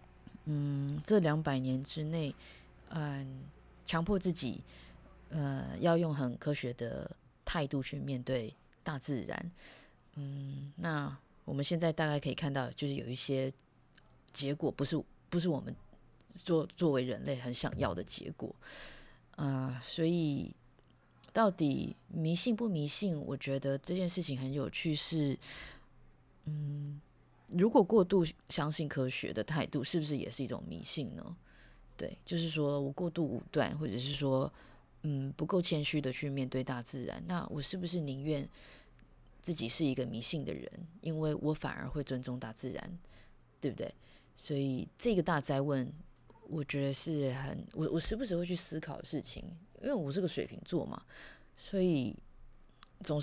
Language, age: Chinese, 20-39